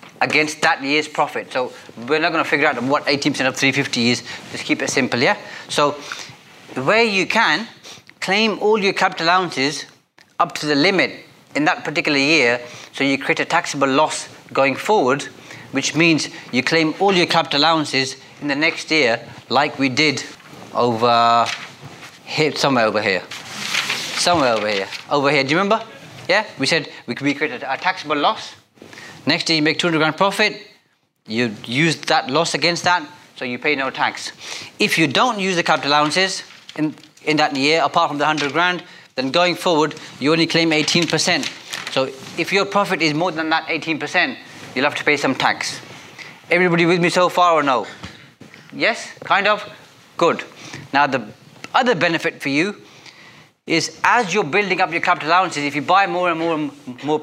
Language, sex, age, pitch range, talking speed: English, male, 30-49, 140-175 Hz, 180 wpm